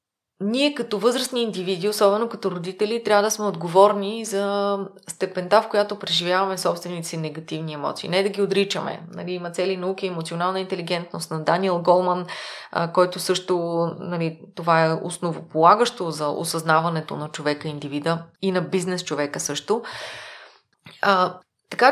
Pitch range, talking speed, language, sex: 170-220 Hz, 135 wpm, Bulgarian, female